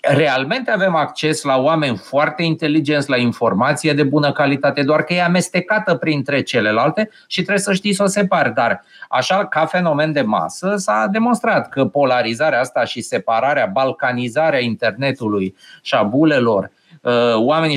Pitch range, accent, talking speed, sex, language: 135-180 Hz, native, 150 wpm, male, Romanian